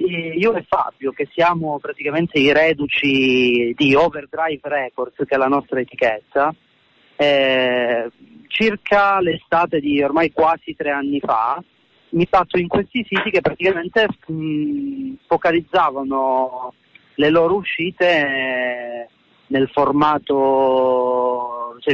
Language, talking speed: Italian, 110 wpm